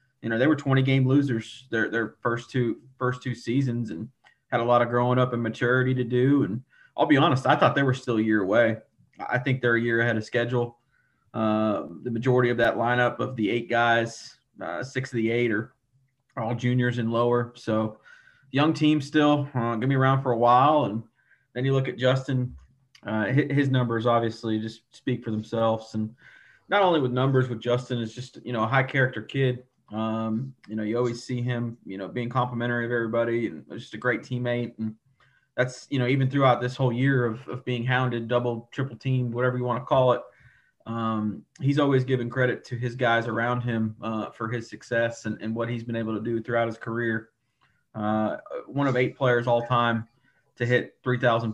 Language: English